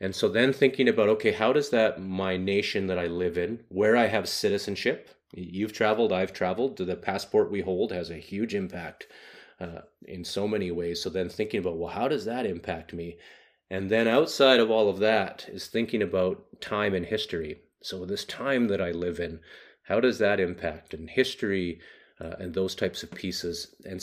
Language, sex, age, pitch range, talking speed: English, male, 30-49, 90-120 Hz, 195 wpm